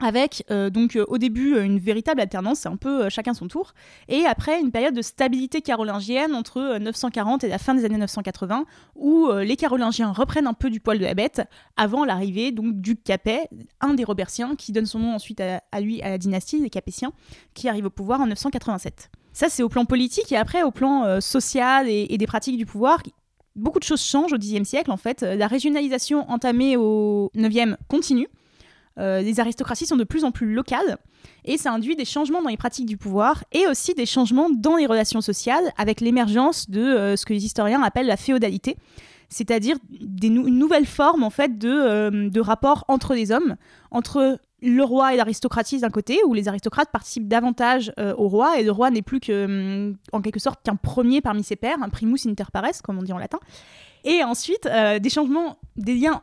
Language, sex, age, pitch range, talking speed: French, female, 20-39, 215-270 Hz, 215 wpm